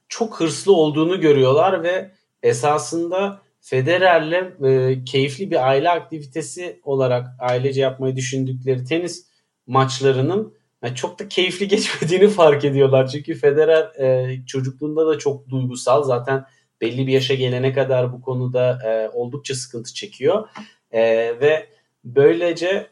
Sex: male